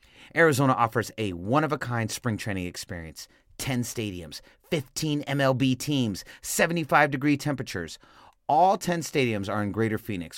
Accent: American